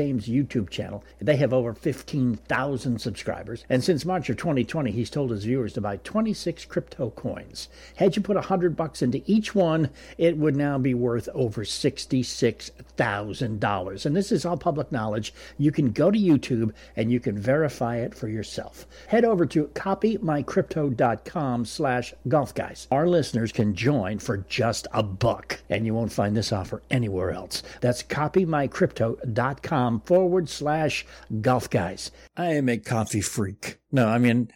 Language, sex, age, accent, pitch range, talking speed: English, male, 60-79, American, 115-170 Hz, 160 wpm